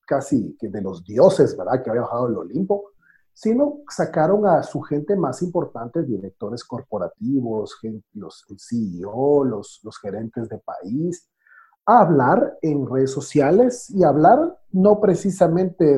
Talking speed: 140 wpm